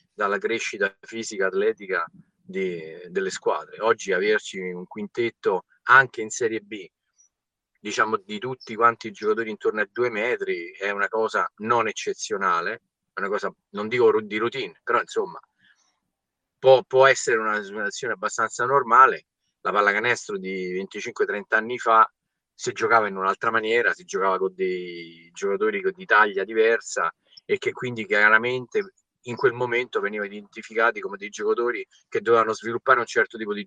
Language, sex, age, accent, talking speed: Italian, male, 30-49, native, 145 wpm